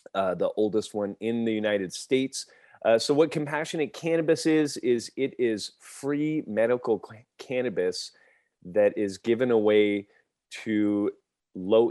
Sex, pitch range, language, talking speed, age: male, 100-135 Hz, English, 130 wpm, 30-49